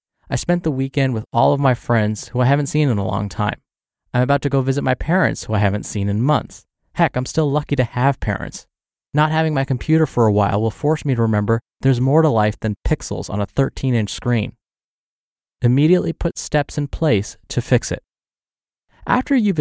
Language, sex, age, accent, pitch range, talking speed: English, male, 20-39, American, 105-140 Hz, 210 wpm